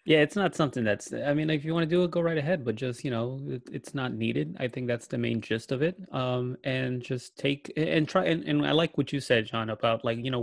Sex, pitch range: male, 120-140 Hz